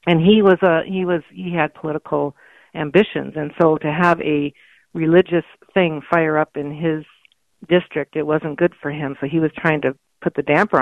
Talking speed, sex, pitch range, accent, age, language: 195 wpm, female, 150-175 Hz, American, 50-69, English